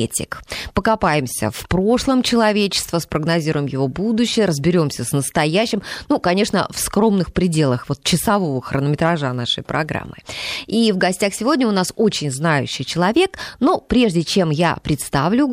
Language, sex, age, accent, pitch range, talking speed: Russian, female, 20-39, native, 150-210 Hz, 130 wpm